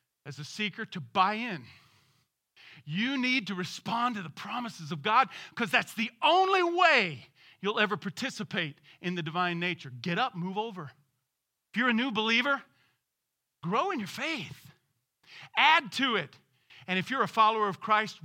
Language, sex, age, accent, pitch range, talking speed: English, male, 40-59, American, 175-240 Hz, 165 wpm